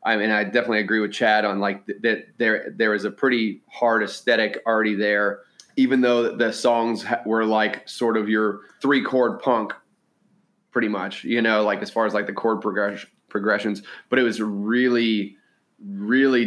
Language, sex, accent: English, male, American